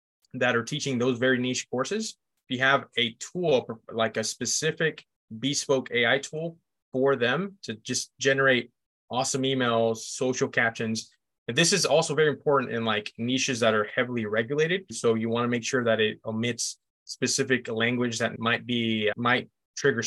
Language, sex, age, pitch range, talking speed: English, male, 20-39, 115-135 Hz, 165 wpm